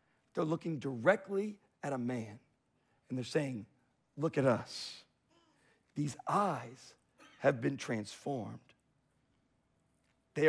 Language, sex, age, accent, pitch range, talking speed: English, male, 50-69, American, 135-190 Hz, 105 wpm